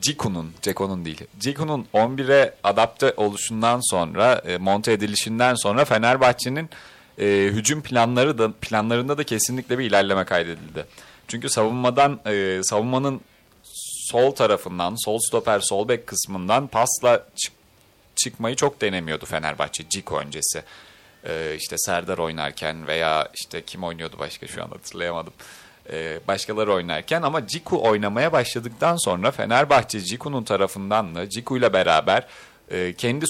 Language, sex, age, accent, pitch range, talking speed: Turkish, male, 30-49, native, 100-130 Hz, 125 wpm